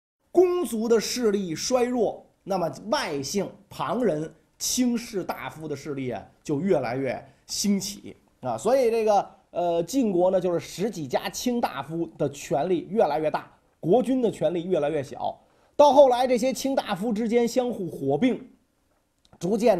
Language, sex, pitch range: Chinese, male, 165-250 Hz